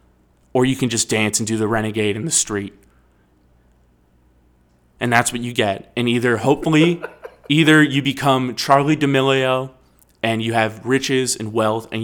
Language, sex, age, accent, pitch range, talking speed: English, male, 20-39, American, 110-130 Hz, 160 wpm